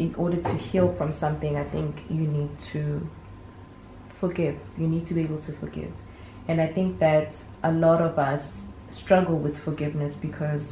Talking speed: 175 wpm